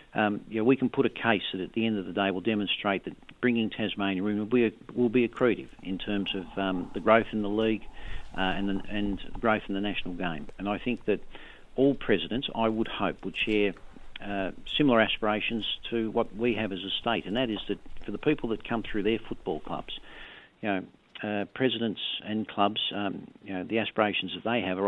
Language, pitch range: English, 95-110 Hz